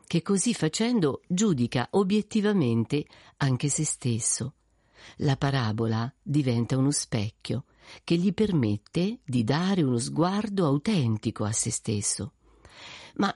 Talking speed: 110 wpm